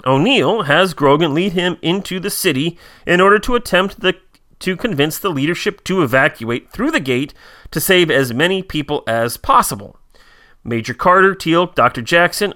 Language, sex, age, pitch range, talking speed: English, male, 30-49, 140-215 Hz, 160 wpm